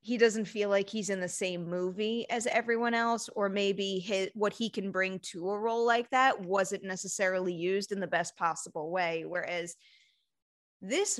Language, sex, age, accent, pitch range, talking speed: English, female, 20-39, American, 190-255 Hz, 175 wpm